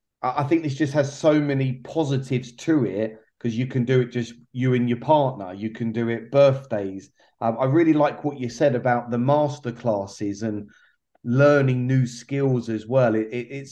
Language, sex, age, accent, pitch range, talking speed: English, male, 30-49, British, 115-140 Hz, 195 wpm